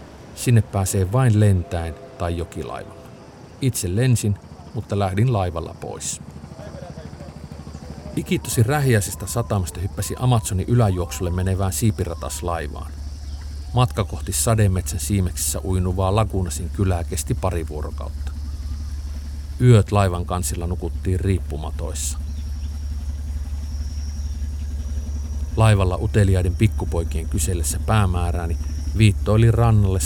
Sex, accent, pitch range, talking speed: male, native, 75-100 Hz, 85 wpm